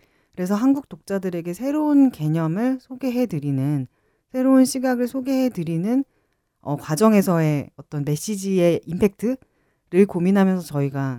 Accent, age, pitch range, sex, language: native, 40-59, 145-220 Hz, female, Korean